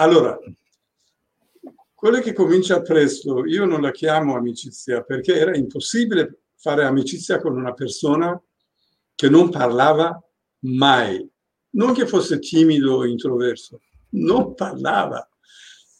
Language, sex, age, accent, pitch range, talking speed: Italian, male, 60-79, native, 130-180 Hz, 115 wpm